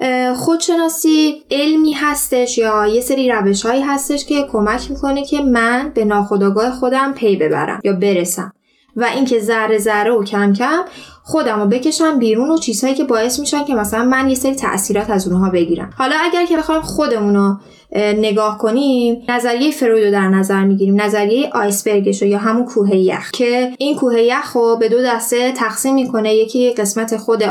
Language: Persian